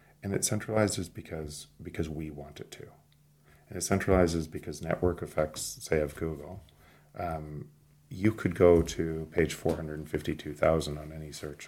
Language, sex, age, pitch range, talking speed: English, male, 40-59, 75-90 Hz, 165 wpm